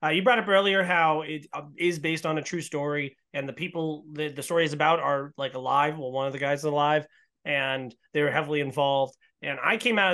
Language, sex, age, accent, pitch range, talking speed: English, male, 30-49, American, 150-190 Hz, 245 wpm